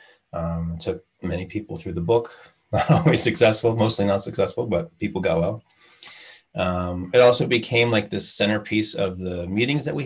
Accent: American